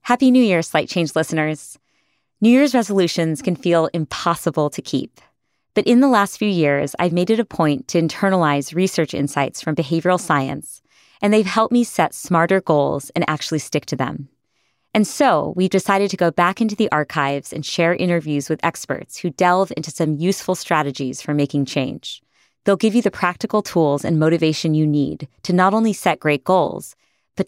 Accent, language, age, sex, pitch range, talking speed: American, English, 30-49, female, 150-190 Hz, 185 wpm